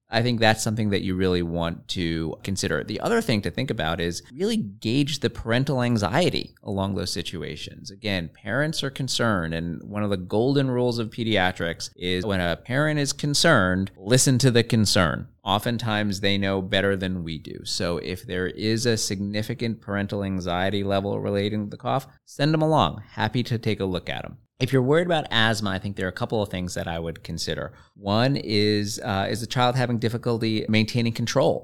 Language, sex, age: English, male, 30-49